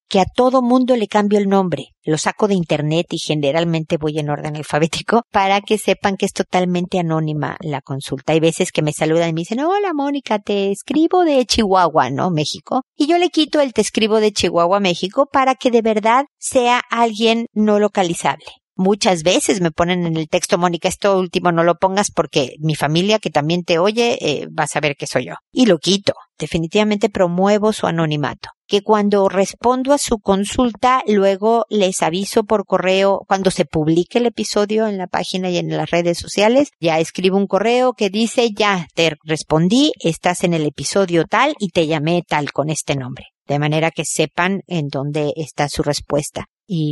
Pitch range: 160-220 Hz